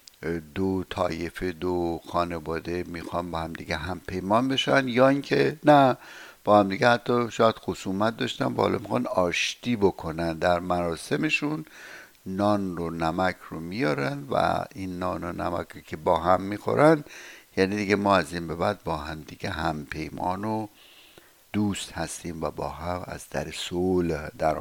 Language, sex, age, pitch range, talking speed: Persian, male, 60-79, 85-125 Hz, 145 wpm